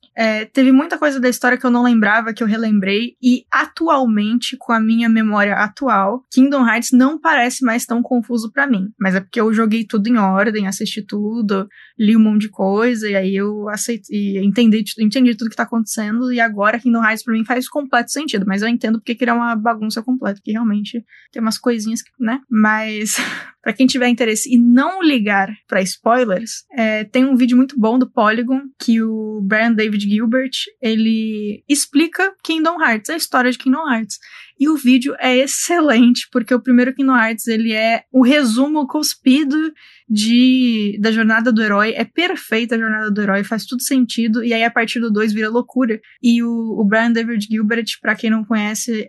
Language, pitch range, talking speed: Portuguese, 215-255 Hz, 195 wpm